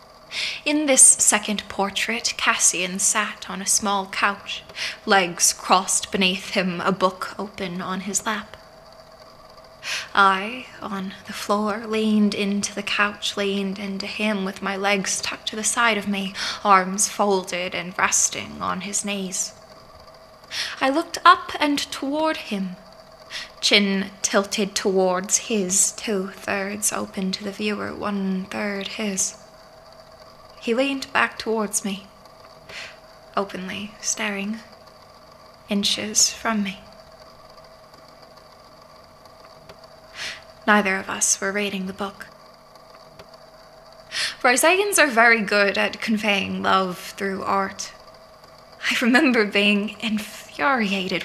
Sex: female